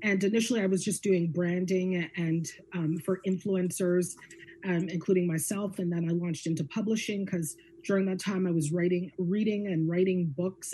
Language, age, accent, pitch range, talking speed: English, 30-49, American, 170-200 Hz, 175 wpm